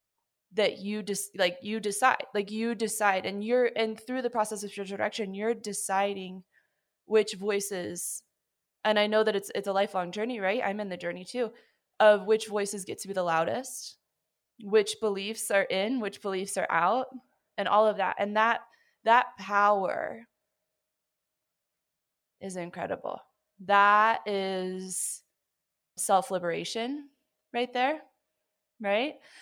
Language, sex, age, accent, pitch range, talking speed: English, female, 20-39, American, 180-215 Hz, 140 wpm